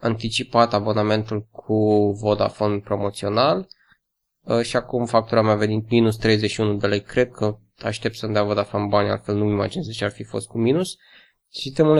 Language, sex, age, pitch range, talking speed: Romanian, male, 20-39, 115-140 Hz, 165 wpm